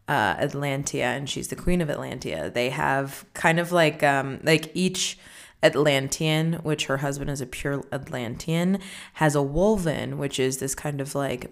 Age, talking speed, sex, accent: 20-39, 170 wpm, female, American